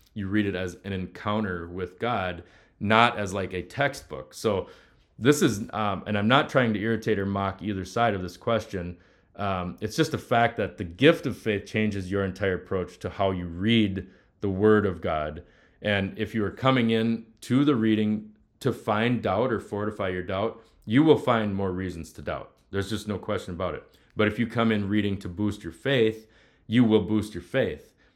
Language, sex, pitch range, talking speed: English, male, 90-110 Hz, 205 wpm